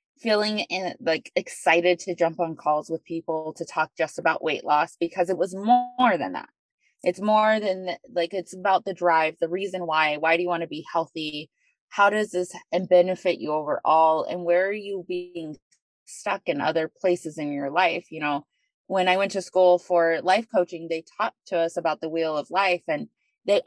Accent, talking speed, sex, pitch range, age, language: American, 205 wpm, female, 160-185 Hz, 20-39, English